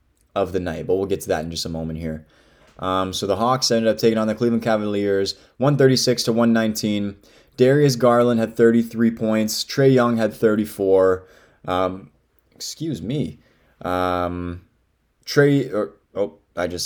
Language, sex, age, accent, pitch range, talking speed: English, male, 20-39, American, 90-120 Hz, 155 wpm